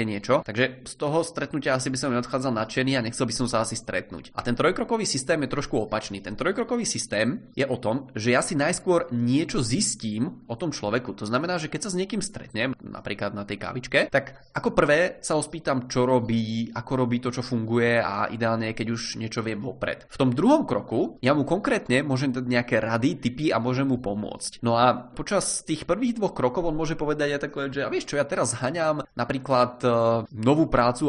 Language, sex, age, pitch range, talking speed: Czech, male, 20-39, 115-140 Hz, 215 wpm